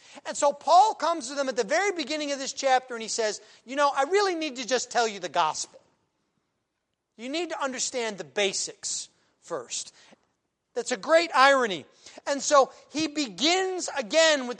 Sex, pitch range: male, 240-305 Hz